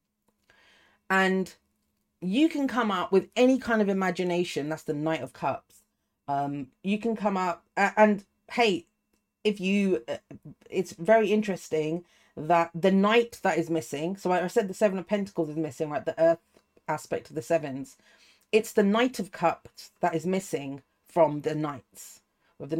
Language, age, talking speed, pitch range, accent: English, 40-59, 170 wpm, 155-200 Hz, British